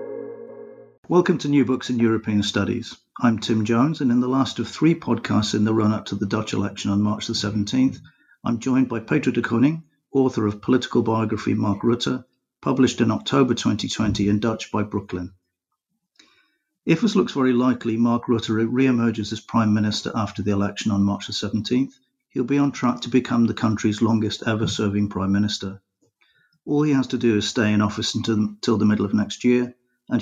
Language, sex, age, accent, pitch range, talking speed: English, male, 50-69, British, 105-130 Hz, 185 wpm